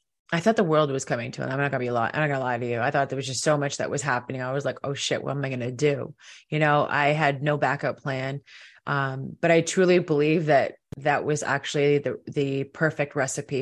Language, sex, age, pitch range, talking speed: English, female, 30-49, 140-155 Hz, 260 wpm